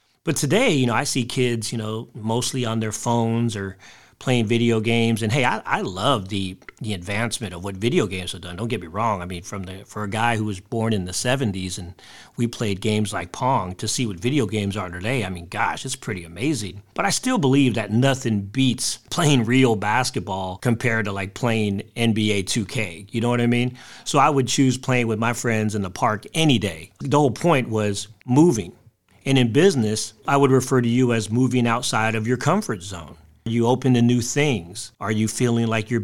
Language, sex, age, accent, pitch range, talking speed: English, male, 40-59, American, 105-130 Hz, 220 wpm